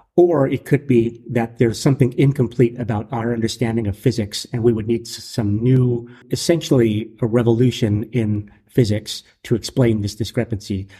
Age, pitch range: 40-59, 110-125 Hz